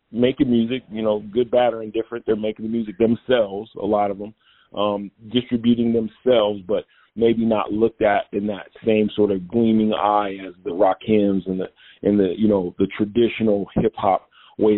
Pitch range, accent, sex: 100-115 Hz, American, male